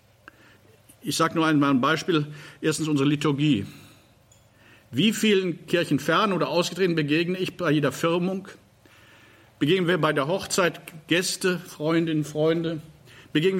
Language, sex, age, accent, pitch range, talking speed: German, male, 50-69, German, 145-185 Hz, 130 wpm